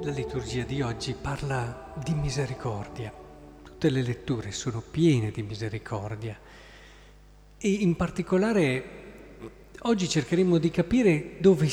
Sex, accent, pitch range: male, native, 125-155 Hz